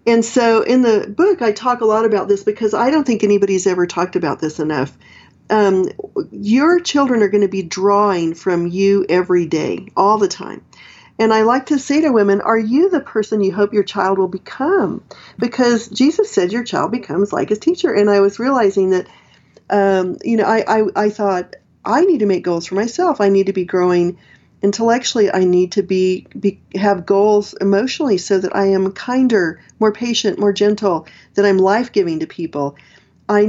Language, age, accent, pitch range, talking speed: English, 40-59, American, 190-235 Hz, 200 wpm